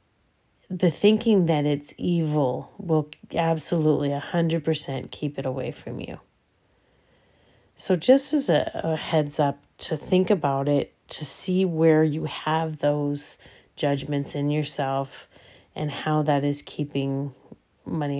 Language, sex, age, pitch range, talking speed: English, female, 30-49, 145-170 Hz, 130 wpm